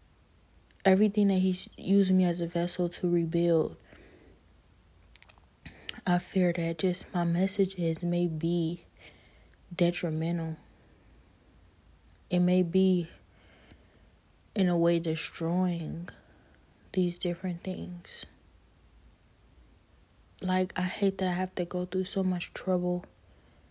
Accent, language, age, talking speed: American, English, 20-39, 105 wpm